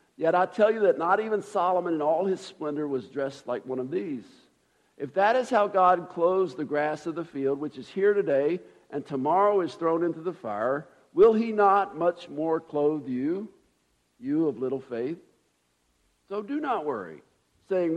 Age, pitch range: 50-69, 145-200 Hz